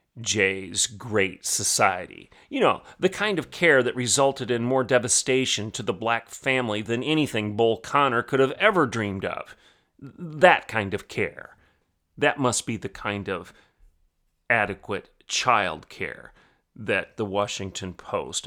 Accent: American